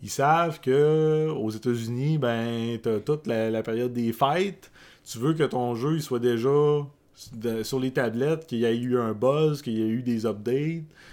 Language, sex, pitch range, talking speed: French, male, 115-145 Hz, 195 wpm